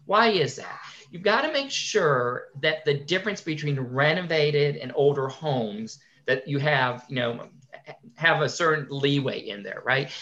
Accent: American